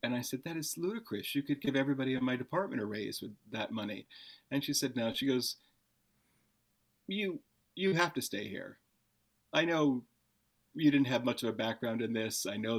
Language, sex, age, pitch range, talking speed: English, male, 40-59, 110-135 Hz, 200 wpm